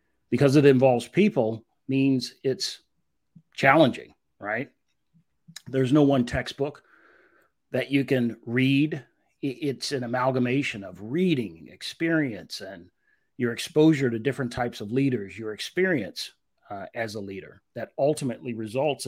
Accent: American